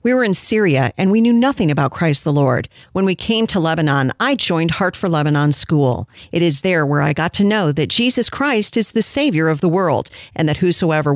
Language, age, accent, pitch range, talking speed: English, 50-69, American, 150-225 Hz, 230 wpm